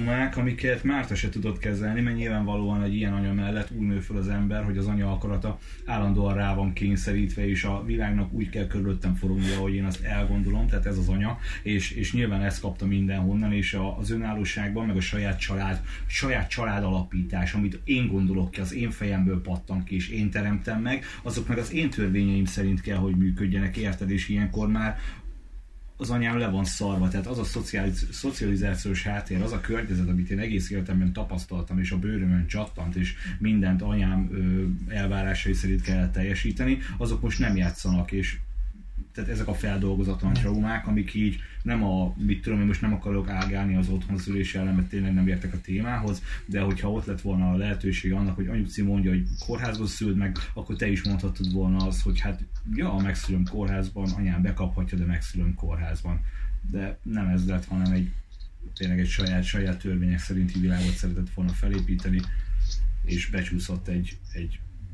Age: 30-49